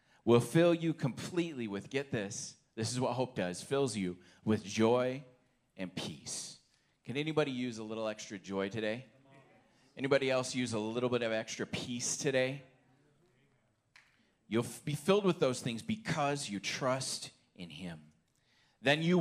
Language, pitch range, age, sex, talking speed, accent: English, 115-155 Hz, 30-49, male, 155 wpm, American